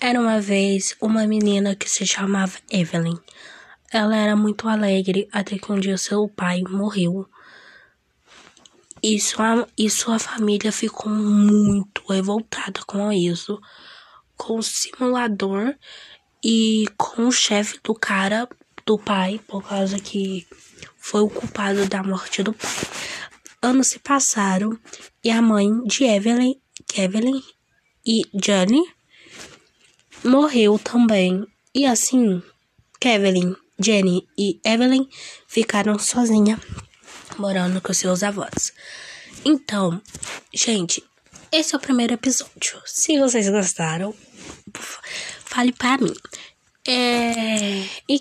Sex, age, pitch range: female, 10-29, 195-235 Hz